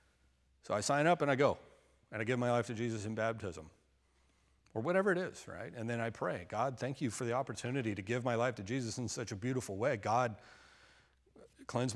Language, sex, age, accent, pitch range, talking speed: English, male, 40-59, American, 95-125 Hz, 220 wpm